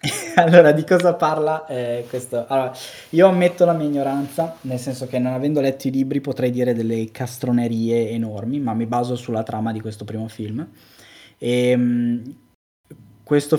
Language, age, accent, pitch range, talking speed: Italian, 20-39, native, 110-130 Hz, 160 wpm